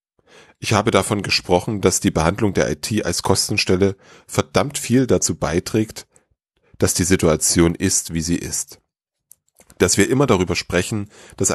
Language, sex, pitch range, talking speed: German, male, 90-115 Hz, 145 wpm